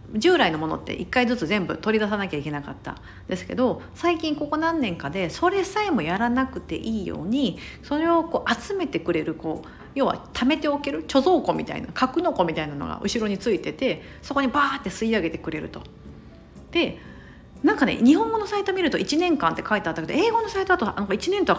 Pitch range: 180-280 Hz